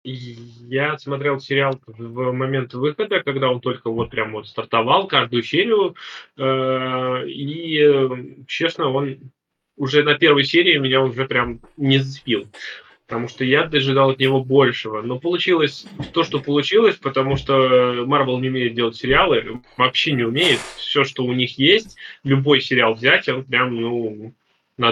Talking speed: 145 wpm